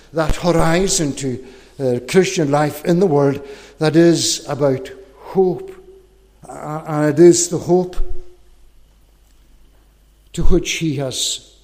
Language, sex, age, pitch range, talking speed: English, male, 60-79, 130-165 Hz, 120 wpm